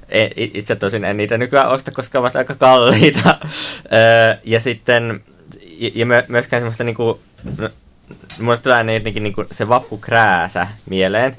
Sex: male